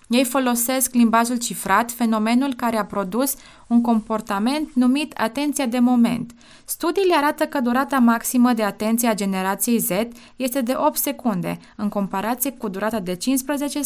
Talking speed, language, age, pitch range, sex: 145 wpm, Romanian, 20-39, 215-270 Hz, female